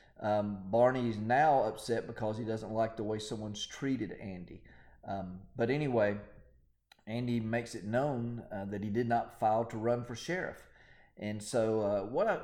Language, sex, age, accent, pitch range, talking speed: English, male, 40-59, American, 105-125 Hz, 170 wpm